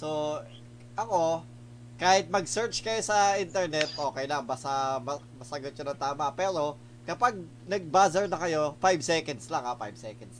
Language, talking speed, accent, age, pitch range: Filipino, 150 wpm, native, 20-39, 120-190 Hz